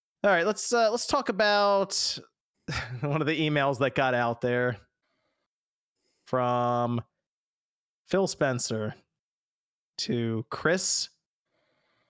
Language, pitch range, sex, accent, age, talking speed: English, 130-175 Hz, male, American, 30-49, 100 wpm